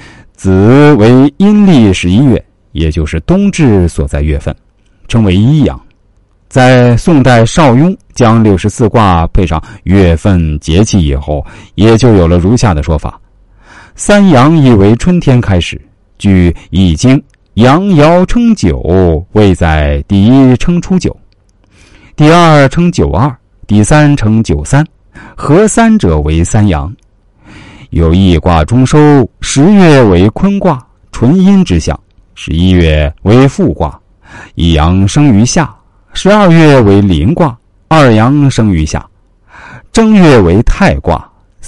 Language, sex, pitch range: Chinese, male, 90-140 Hz